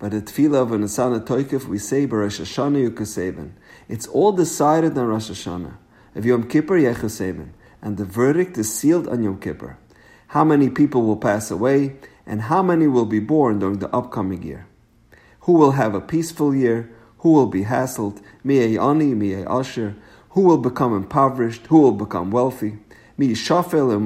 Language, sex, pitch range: English, male, 105-145 Hz